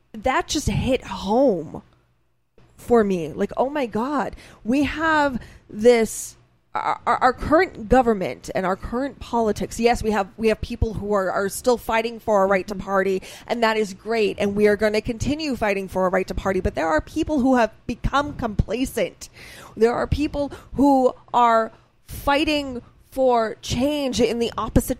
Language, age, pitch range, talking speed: English, 20-39, 210-265 Hz, 175 wpm